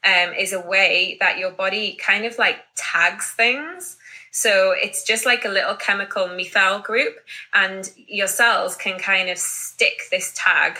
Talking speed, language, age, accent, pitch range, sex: 165 wpm, English, 20-39, British, 180-225 Hz, female